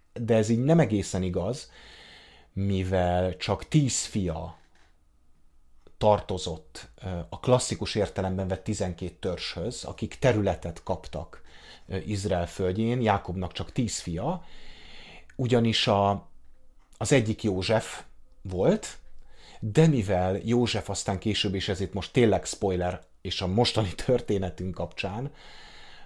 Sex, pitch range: male, 90-115 Hz